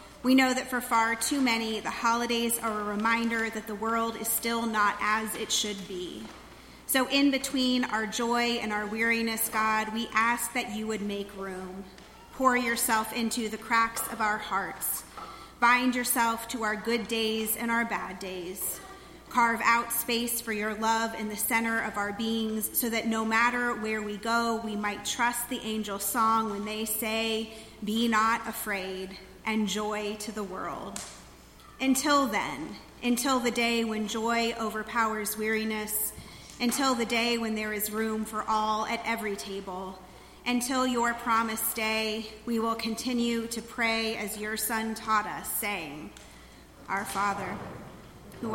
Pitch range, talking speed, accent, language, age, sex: 215-235 Hz, 160 wpm, American, English, 30-49, female